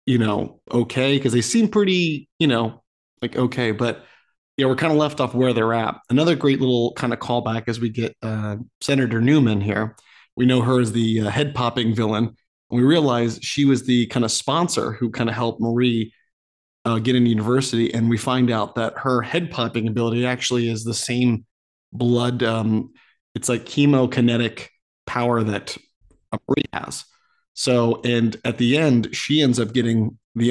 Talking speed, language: 185 wpm, English